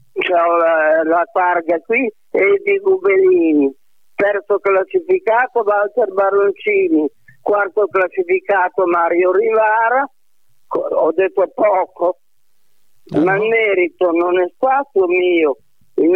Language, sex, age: Italian, male, 50-69